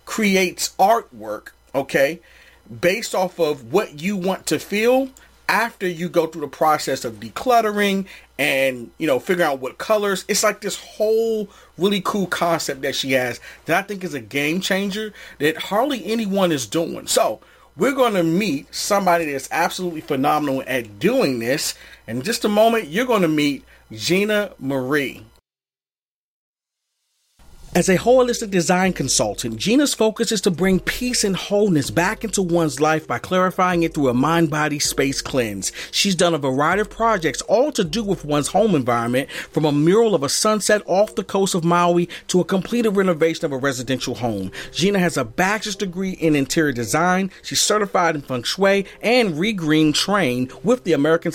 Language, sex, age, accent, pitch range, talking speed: English, male, 40-59, American, 140-205 Hz, 170 wpm